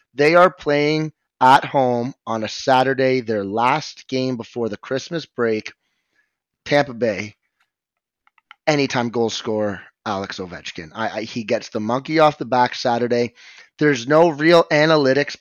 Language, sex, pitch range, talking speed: English, male, 115-140 Hz, 130 wpm